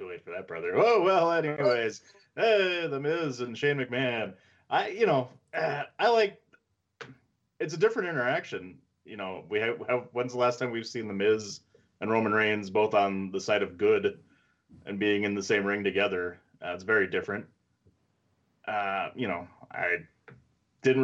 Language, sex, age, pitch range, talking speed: English, male, 30-49, 90-125 Hz, 175 wpm